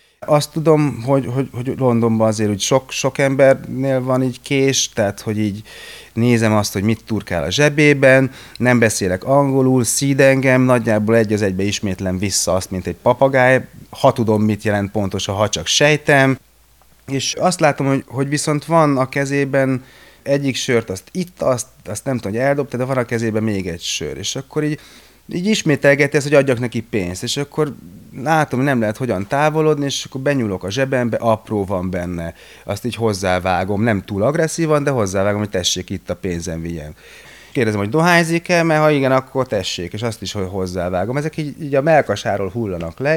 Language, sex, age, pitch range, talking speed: Hungarian, male, 30-49, 100-140 Hz, 185 wpm